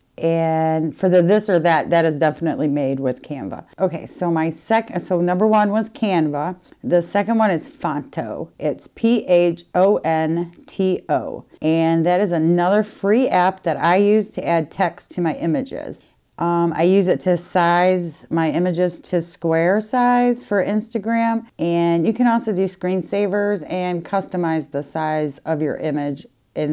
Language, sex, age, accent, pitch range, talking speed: English, female, 30-49, American, 160-200 Hz, 170 wpm